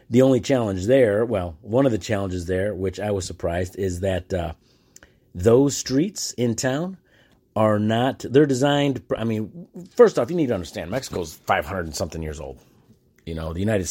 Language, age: English, 30-49